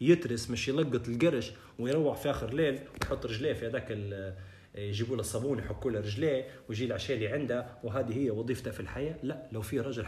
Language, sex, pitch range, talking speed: Arabic, male, 105-130 Hz, 175 wpm